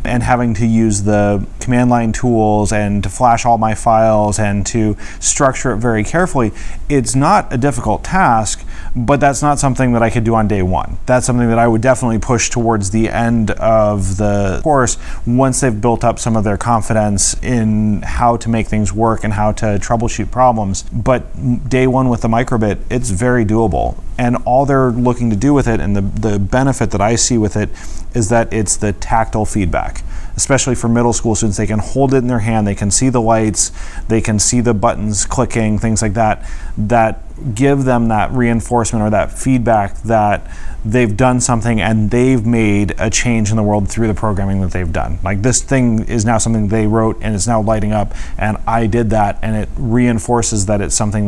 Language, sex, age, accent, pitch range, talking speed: English, male, 30-49, American, 105-120 Hz, 205 wpm